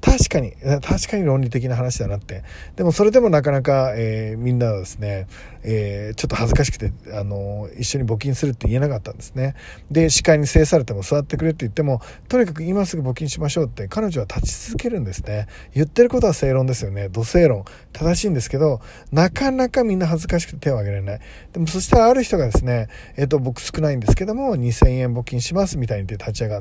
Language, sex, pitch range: Japanese, male, 115-165 Hz